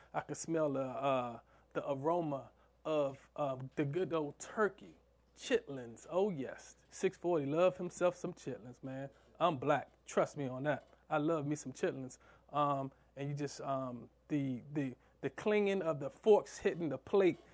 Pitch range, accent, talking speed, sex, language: 135-155 Hz, American, 170 wpm, male, English